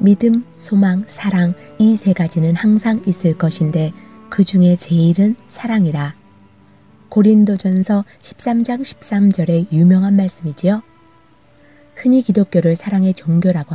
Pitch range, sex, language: 165-210 Hz, female, Korean